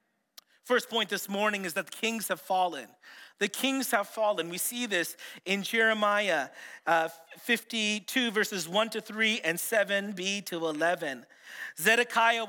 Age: 40-59